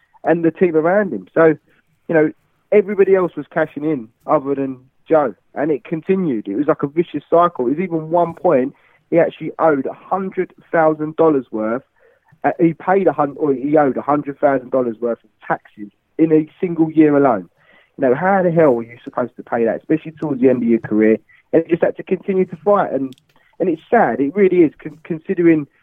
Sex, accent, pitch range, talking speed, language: male, British, 130-170 Hz, 200 wpm, English